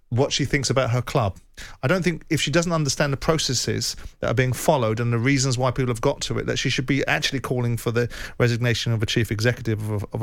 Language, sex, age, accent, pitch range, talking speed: English, male, 40-59, British, 120-140 Hz, 245 wpm